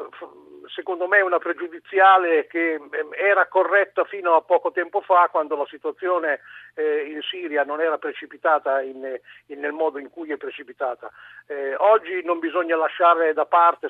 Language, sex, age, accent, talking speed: Italian, male, 50-69, native, 140 wpm